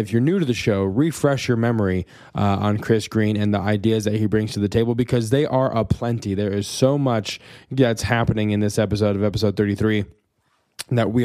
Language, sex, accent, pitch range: English, male, American, 105-125 Hz